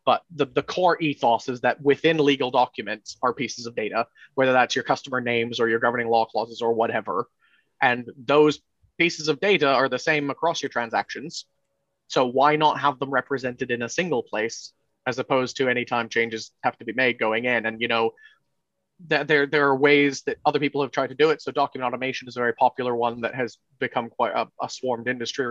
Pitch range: 120-140 Hz